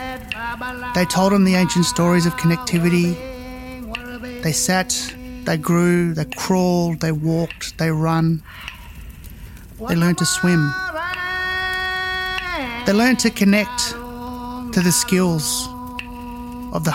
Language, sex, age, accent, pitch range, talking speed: English, male, 30-49, Australian, 160-240 Hz, 110 wpm